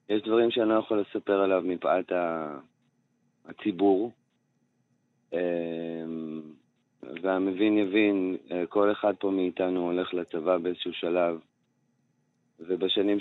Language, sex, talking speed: Hebrew, male, 90 wpm